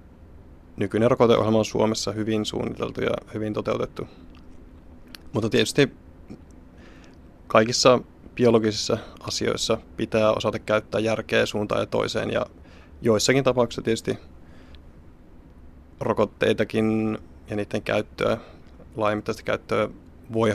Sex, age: male, 20-39